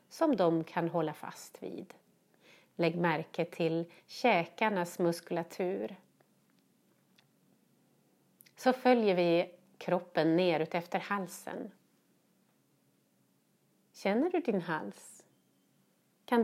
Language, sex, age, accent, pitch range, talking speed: Swedish, female, 30-49, native, 175-240 Hz, 85 wpm